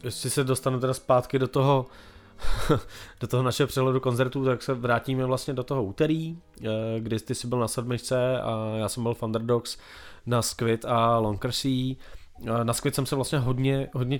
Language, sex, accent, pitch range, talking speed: Czech, male, native, 115-135 Hz, 180 wpm